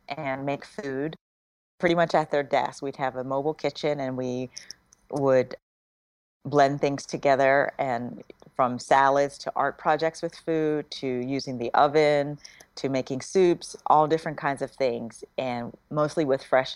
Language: English